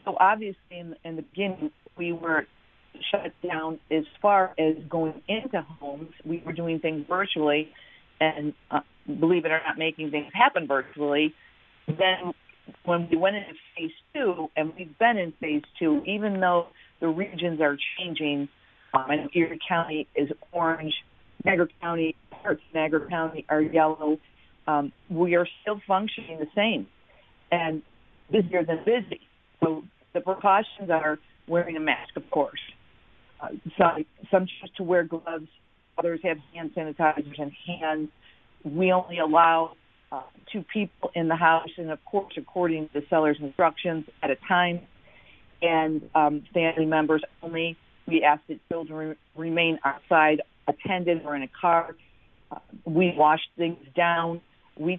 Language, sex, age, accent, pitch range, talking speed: English, female, 50-69, American, 155-175 Hz, 150 wpm